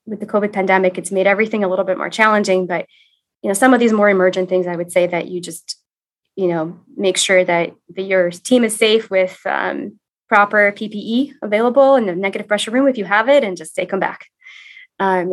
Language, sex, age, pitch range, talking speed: English, female, 20-39, 185-230 Hz, 220 wpm